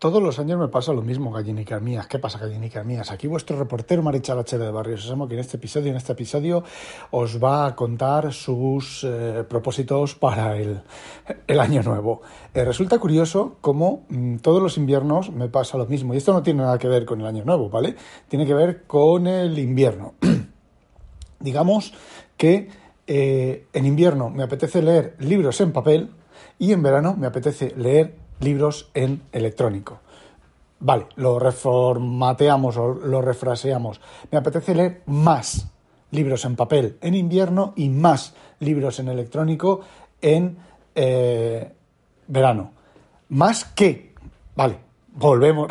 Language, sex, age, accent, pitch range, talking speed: Spanish, male, 60-79, Spanish, 125-160 Hz, 155 wpm